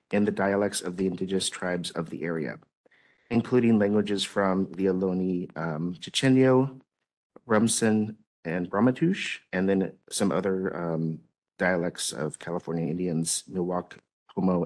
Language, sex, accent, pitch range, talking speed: English, male, American, 95-115 Hz, 125 wpm